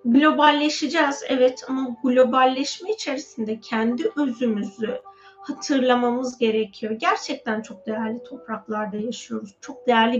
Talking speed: 95 wpm